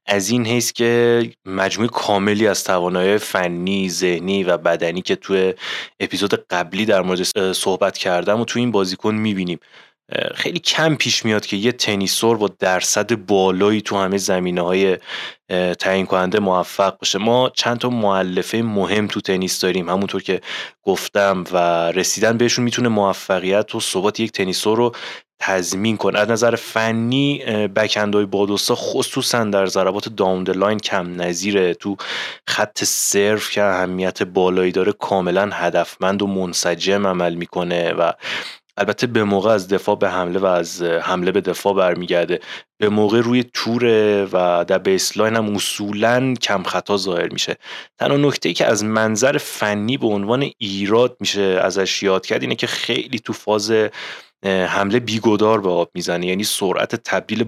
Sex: male